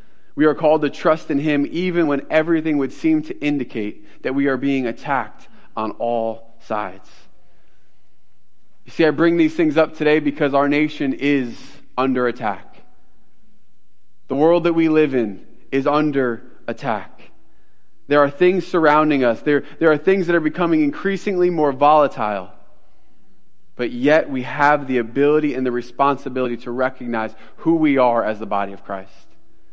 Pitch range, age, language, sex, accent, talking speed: 120-155 Hz, 30-49, English, male, American, 160 wpm